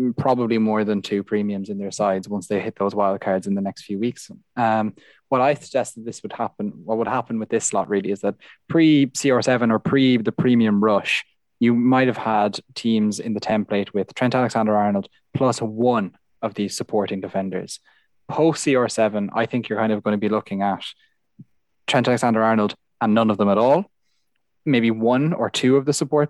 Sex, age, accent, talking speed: male, 20-39, Irish, 190 wpm